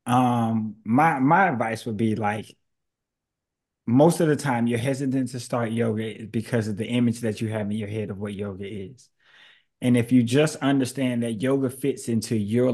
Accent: American